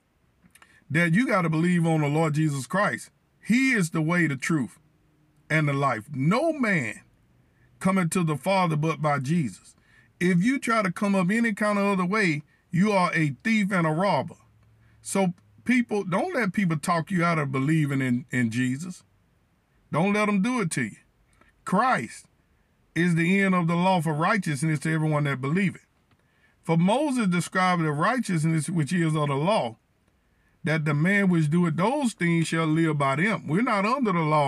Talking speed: 185 wpm